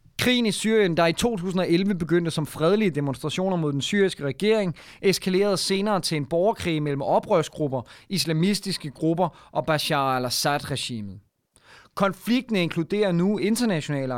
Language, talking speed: Danish, 125 wpm